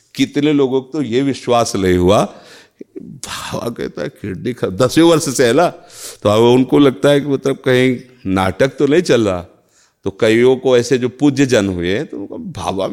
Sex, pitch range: male, 105-155 Hz